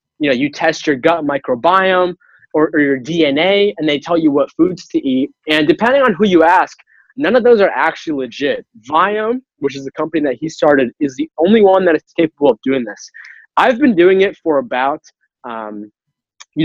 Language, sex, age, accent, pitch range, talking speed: English, male, 20-39, American, 145-220 Hz, 205 wpm